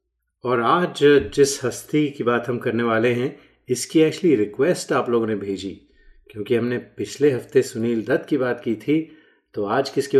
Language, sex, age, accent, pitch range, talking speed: Hindi, male, 30-49, native, 105-140 Hz, 175 wpm